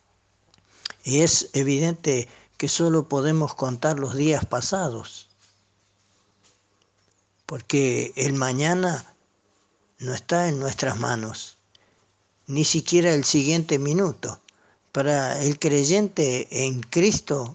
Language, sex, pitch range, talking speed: Spanish, male, 120-160 Hz, 95 wpm